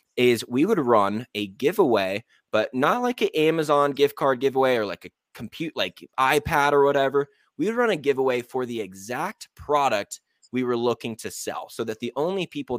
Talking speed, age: 190 wpm, 20-39